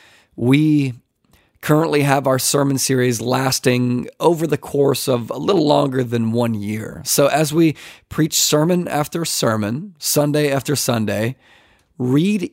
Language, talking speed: English, 135 wpm